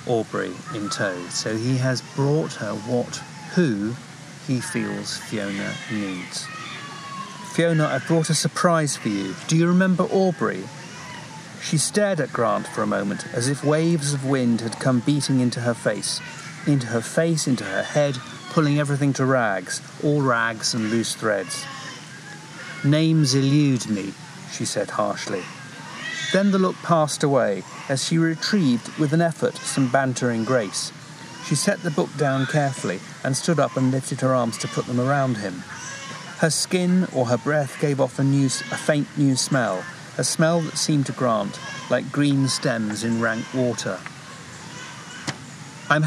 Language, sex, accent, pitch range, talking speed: English, male, British, 125-165 Hz, 160 wpm